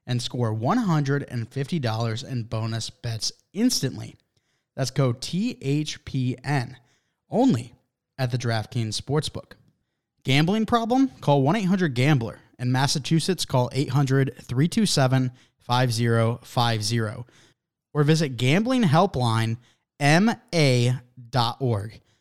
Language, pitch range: English, 120-150 Hz